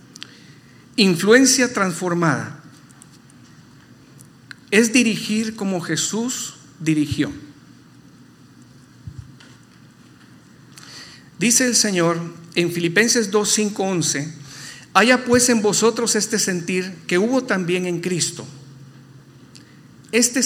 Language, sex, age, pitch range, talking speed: Spanish, male, 50-69, 150-210 Hz, 75 wpm